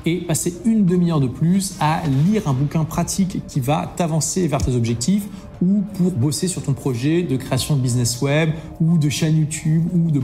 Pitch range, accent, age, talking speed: 140-180 Hz, French, 30-49, 200 wpm